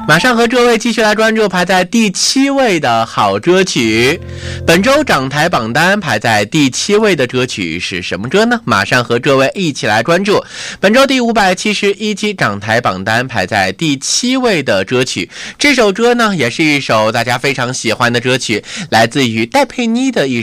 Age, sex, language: 20-39, male, Chinese